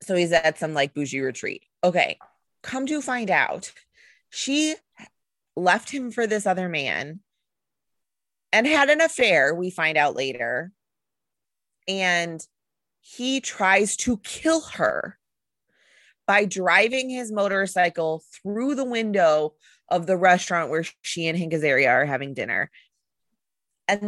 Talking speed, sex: 125 wpm, female